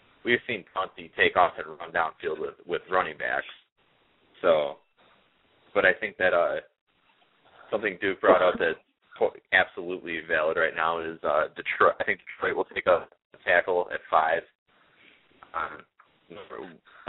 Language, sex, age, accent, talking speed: English, male, 20-39, American, 140 wpm